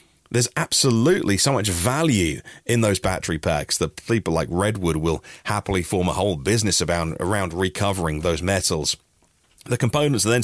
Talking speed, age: 155 wpm, 30-49